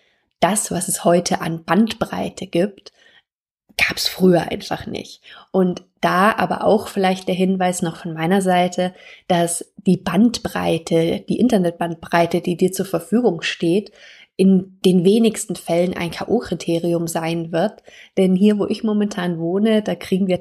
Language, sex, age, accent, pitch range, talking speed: German, female, 20-39, German, 175-205 Hz, 145 wpm